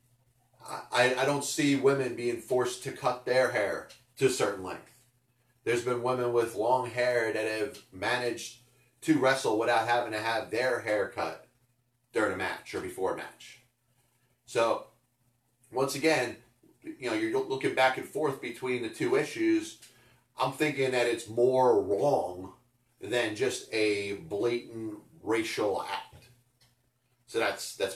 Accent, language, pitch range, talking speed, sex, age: American, English, 115-150 Hz, 150 wpm, male, 30-49